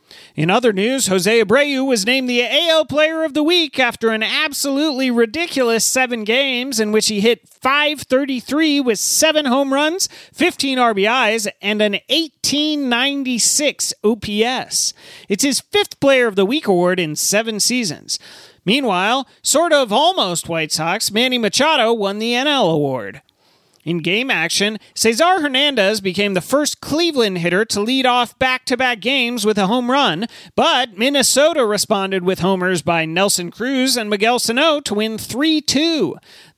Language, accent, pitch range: English, American, 210-275 Hz